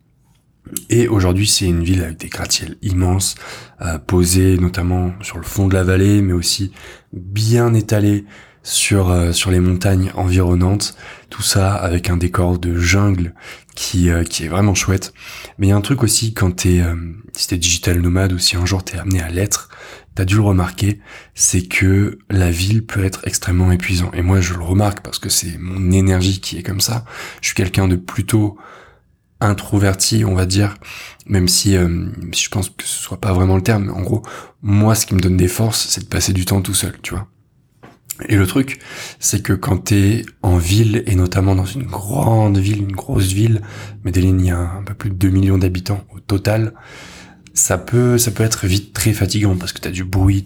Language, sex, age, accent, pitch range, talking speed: French, male, 20-39, French, 90-105 Hz, 210 wpm